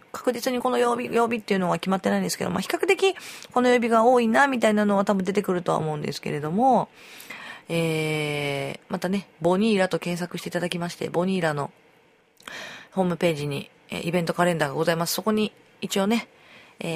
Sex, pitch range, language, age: female, 155-225 Hz, Japanese, 40-59